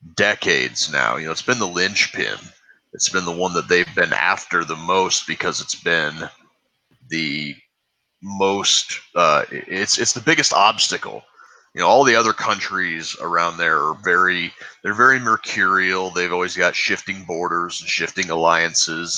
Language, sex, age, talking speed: English, male, 30-49, 155 wpm